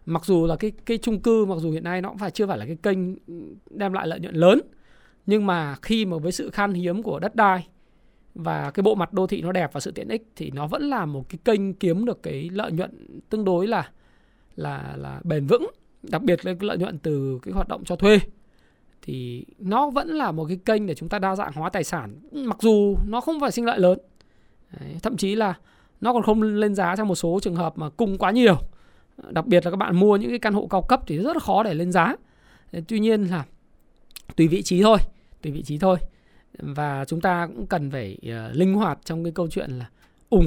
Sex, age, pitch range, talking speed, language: male, 20-39, 160-210 Hz, 245 wpm, Vietnamese